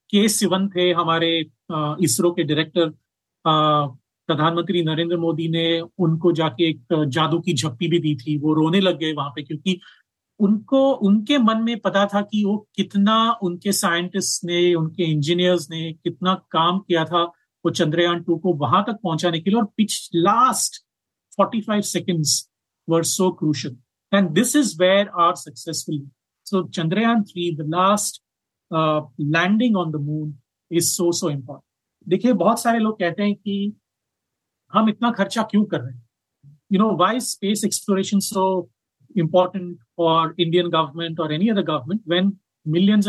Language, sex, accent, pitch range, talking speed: Hindi, male, native, 155-195 Hz, 155 wpm